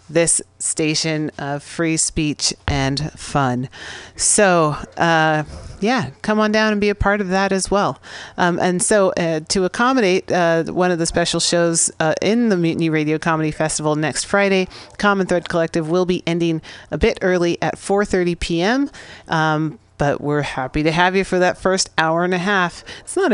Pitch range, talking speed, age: 155-185 Hz, 180 wpm, 40-59